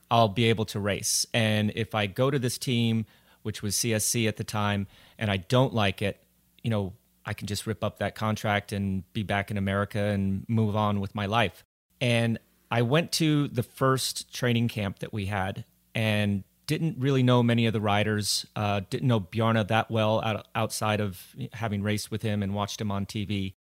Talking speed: 200 wpm